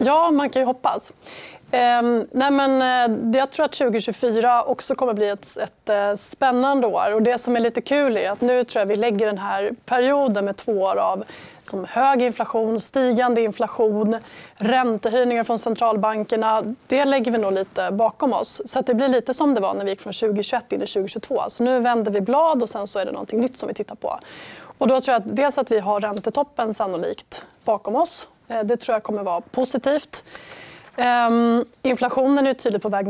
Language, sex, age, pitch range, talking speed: Swedish, female, 20-39, 220-260 Hz, 200 wpm